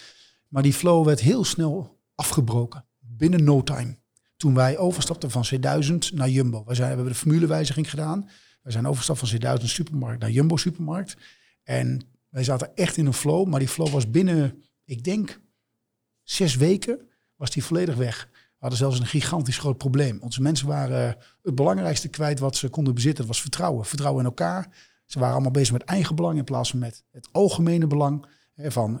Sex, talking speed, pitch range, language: male, 190 wpm, 125-160 Hz, Dutch